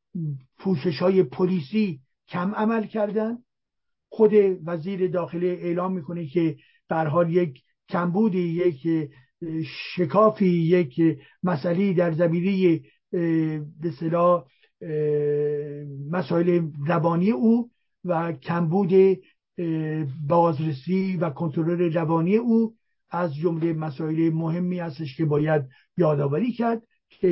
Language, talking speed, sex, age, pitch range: English, 95 wpm, male, 50-69, 160-200 Hz